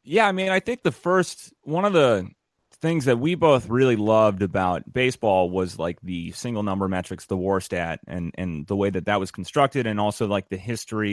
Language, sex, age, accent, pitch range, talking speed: English, male, 30-49, American, 95-120 Hz, 215 wpm